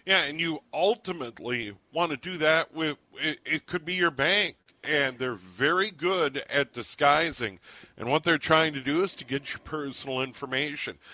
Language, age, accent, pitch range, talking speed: English, 40-59, American, 125-155 Hz, 180 wpm